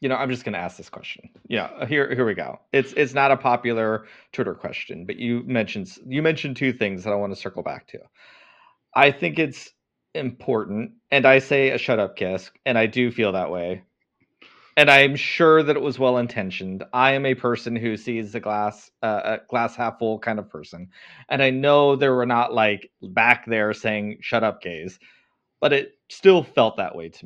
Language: English